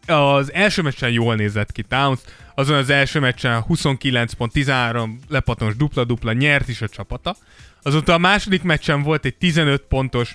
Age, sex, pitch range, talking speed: 20-39, male, 115-150 Hz, 150 wpm